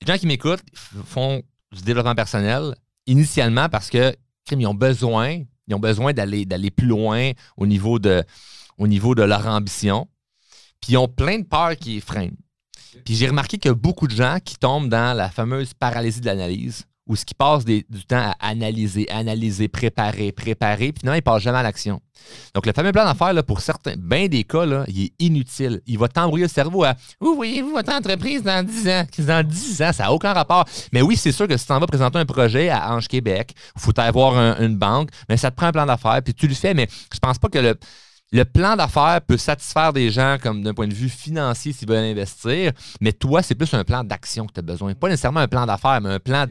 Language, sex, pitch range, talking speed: French, male, 110-150 Hz, 235 wpm